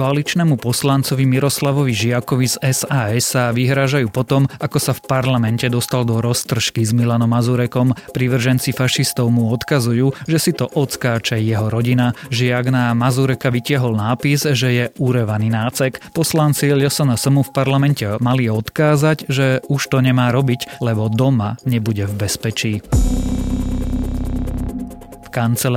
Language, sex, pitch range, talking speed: Slovak, male, 115-140 Hz, 130 wpm